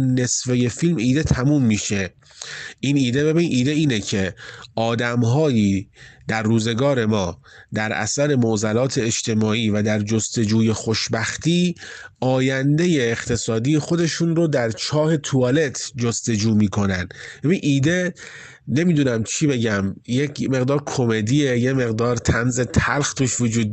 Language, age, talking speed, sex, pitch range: Persian, 30-49, 115 wpm, male, 115-150 Hz